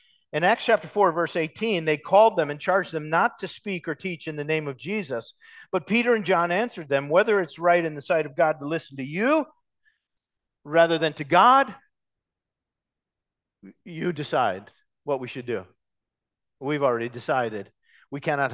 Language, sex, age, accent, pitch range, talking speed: English, male, 50-69, American, 145-190 Hz, 180 wpm